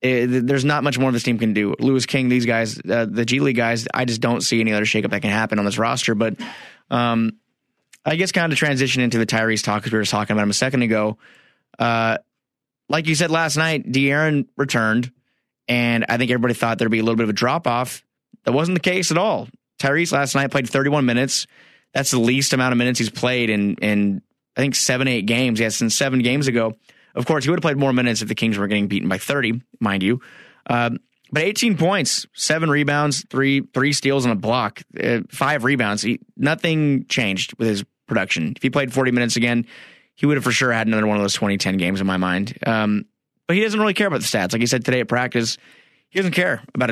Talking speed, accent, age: 235 wpm, American, 20-39